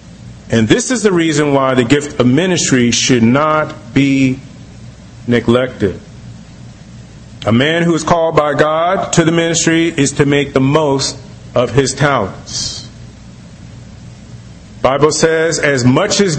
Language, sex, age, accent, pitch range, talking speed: English, male, 40-59, American, 115-155 Hz, 135 wpm